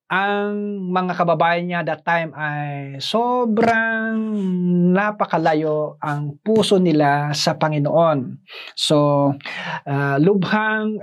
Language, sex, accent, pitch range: Filipino, male, native, 155-195 Hz